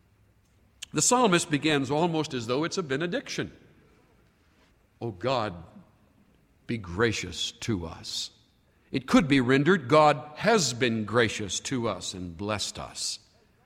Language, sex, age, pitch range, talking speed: English, male, 60-79, 120-195 Hz, 125 wpm